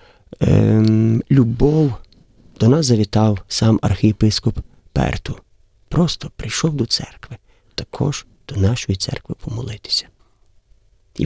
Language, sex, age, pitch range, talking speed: Ukrainian, male, 40-59, 100-120 Hz, 90 wpm